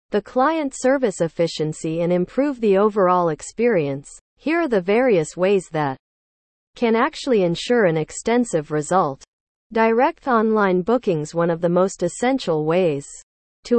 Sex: female